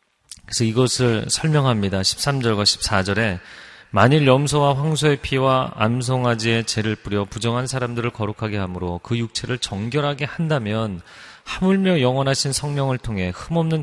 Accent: native